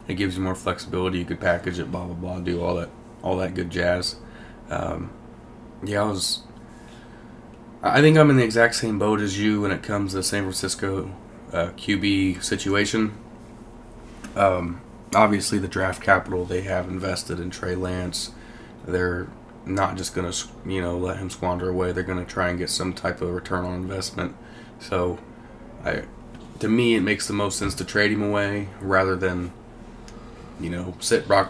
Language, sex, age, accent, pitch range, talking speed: English, male, 20-39, American, 90-105 Hz, 180 wpm